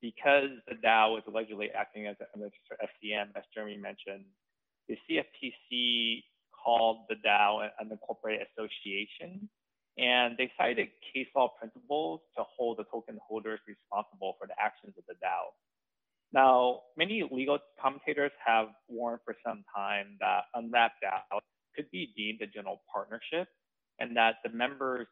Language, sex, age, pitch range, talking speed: English, male, 20-39, 105-125 Hz, 145 wpm